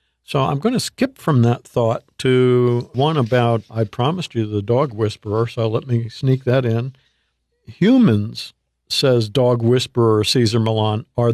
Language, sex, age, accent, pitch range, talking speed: English, male, 50-69, American, 115-135 Hz, 160 wpm